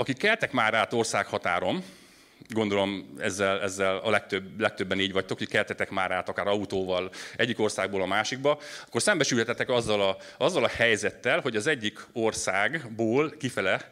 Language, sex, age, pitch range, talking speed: Hungarian, male, 30-49, 100-125 Hz, 150 wpm